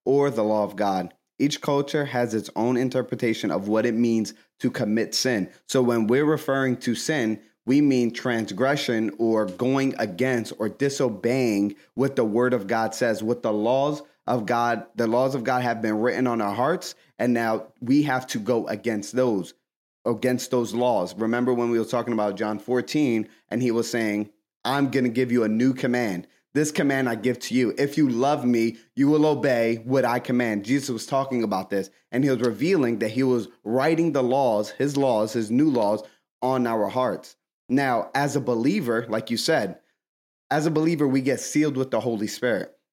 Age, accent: 30-49, American